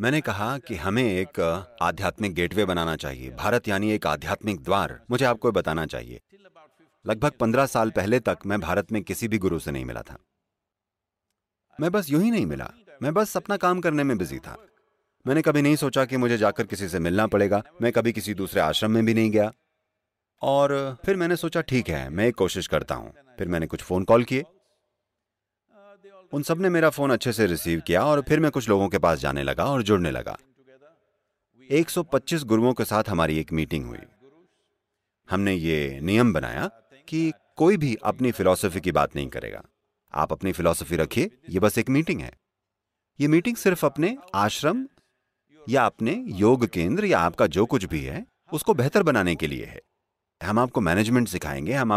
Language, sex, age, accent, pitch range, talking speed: English, male, 30-49, Indian, 90-145 Hz, 130 wpm